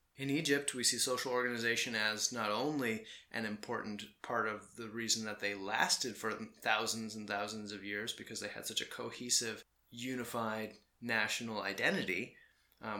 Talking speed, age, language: 155 wpm, 30-49, English